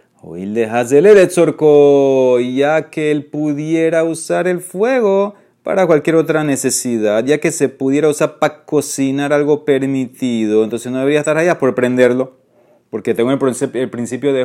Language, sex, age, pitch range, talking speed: Spanish, male, 30-49, 120-170 Hz, 150 wpm